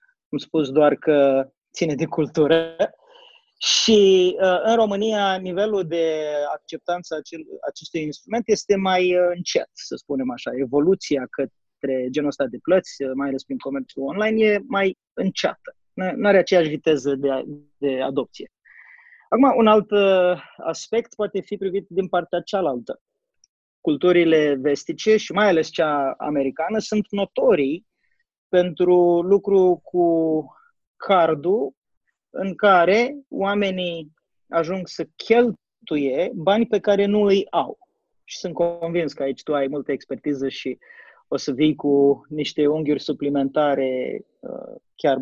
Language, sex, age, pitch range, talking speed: English, male, 20-39, 150-210 Hz, 125 wpm